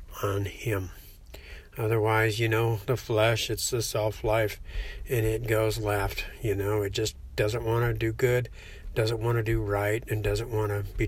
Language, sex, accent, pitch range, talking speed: English, male, American, 105-120 Hz, 185 wpm